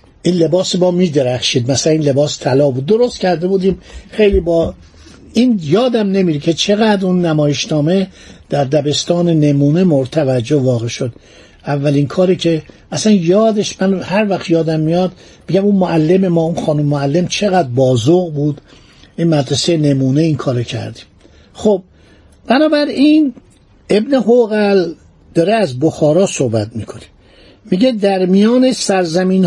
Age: 60-79